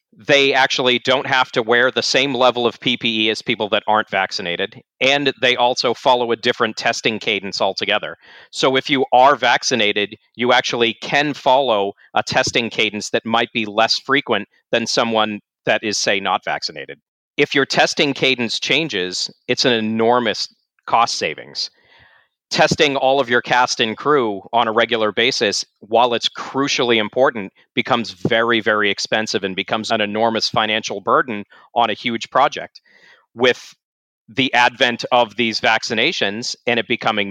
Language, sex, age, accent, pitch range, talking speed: English, male, 40-59, American, 110-125 Hz, 155 wpm